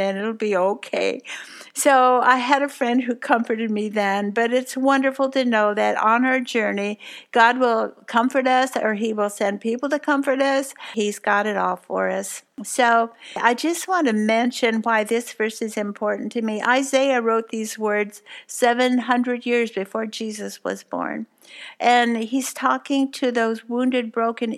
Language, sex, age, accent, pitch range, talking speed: English, female, 60-79, American, 215-250 Hz, 170 wpm